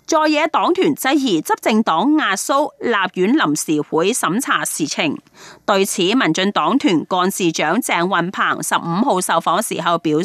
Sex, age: female, 30-49